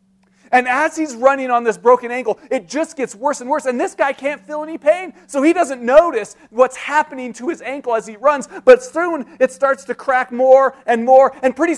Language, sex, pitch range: English, male, 225-300 Hz